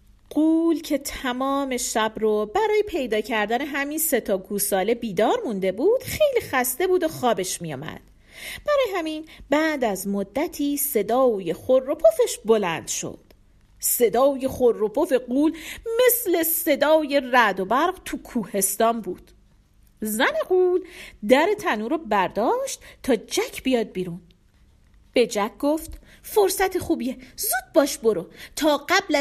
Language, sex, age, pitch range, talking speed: Persian, female, 40-59, 240-350 Hz, 130 wpm